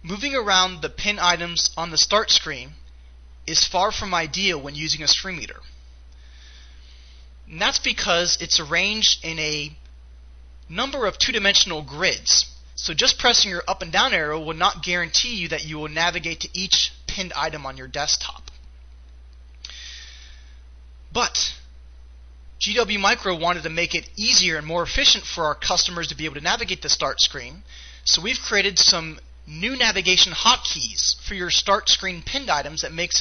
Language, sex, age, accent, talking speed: English, male, 20-39, American, 160 wpm